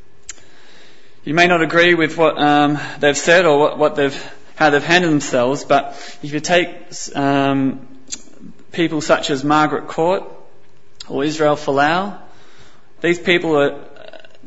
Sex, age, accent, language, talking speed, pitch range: male, 20-39, Australian, English, 135 wpm, 130-160 Hz